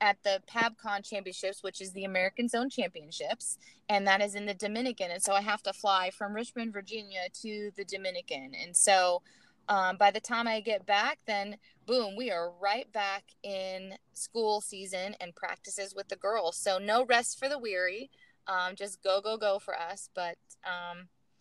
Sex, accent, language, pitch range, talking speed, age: female, American, English, 180-215 Hz, 185 wpm, 20-39